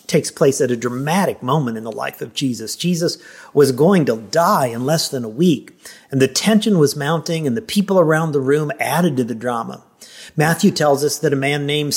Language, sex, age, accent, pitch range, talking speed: English, male, 50-69, American, 140-200 Hz, 215 wpm